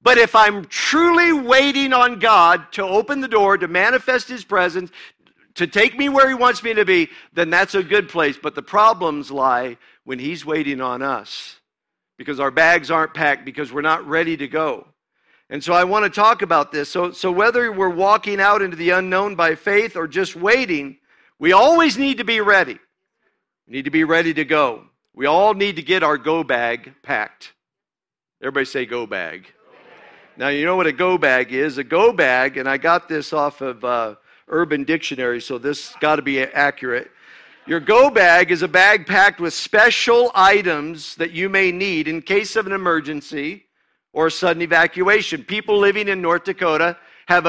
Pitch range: 155-210 Hz